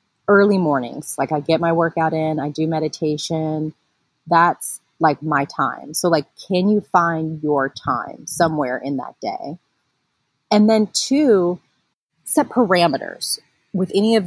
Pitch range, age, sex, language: 155-200 Hz, 30-49, female, English